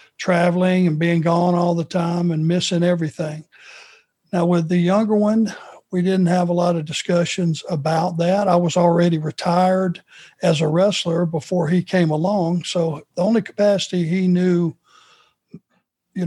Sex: male